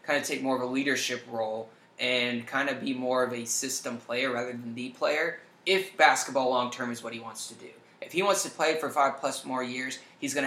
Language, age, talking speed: English, 20-39, 240 wpm